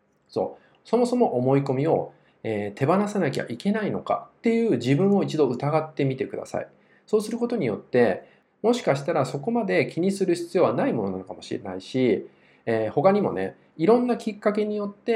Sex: male